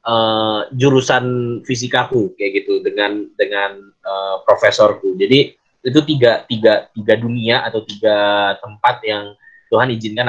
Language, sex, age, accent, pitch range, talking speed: Indonesian, male, 20-39, native, 125-195 Hz, 120 wpm